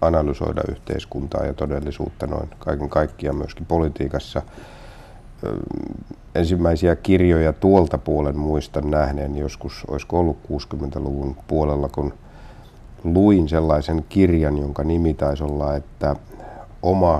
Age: 60-79